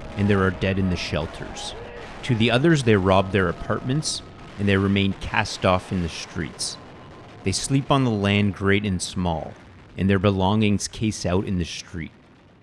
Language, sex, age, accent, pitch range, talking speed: English, male, 30-49, American, 95-120 Hz, 180 wpm